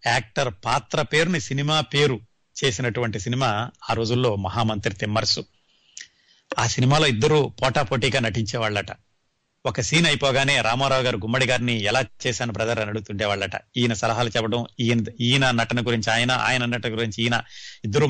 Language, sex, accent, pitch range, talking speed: Telugu, male, native, 115-145 Hz, 145 wpm